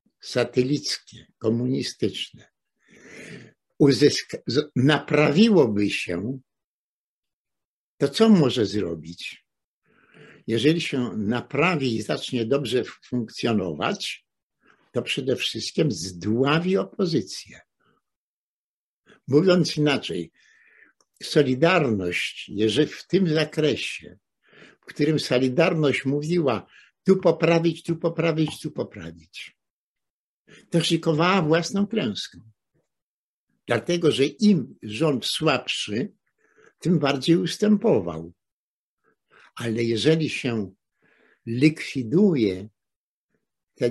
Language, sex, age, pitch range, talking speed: Polish, male, 60-79, 120-165 Hz, 75 wpm